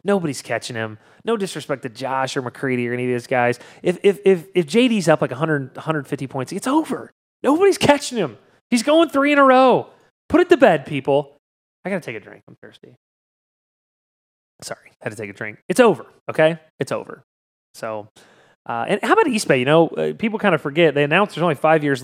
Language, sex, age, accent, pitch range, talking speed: English, male, 30-49, American, 120-185 Hz, 215 wpm